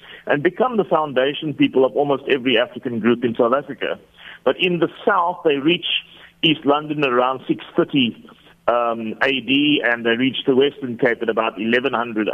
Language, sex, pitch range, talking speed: English, male, 130-175 Hz, 165 wpm